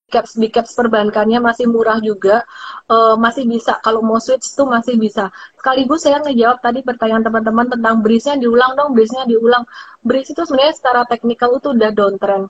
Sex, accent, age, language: female, native, 30-49, Indonesian